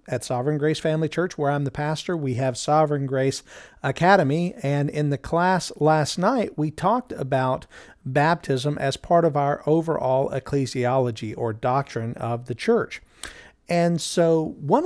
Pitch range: 135-170 Hz